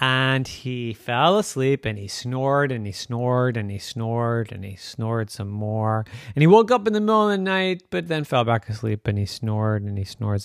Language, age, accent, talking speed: English, 30-49, American, 230 wpm